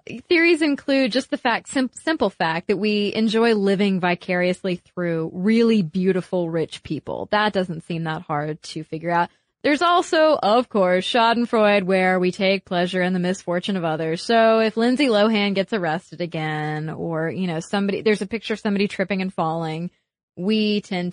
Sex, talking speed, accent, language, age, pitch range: female, 170 wpm, American, English, 20-39, 180-235 Hz